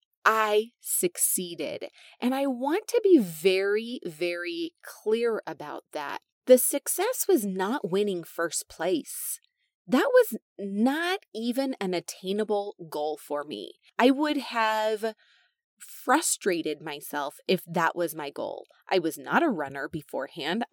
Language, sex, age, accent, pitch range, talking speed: English, female, 30-49, American, 170-260 Hz, 125 wpm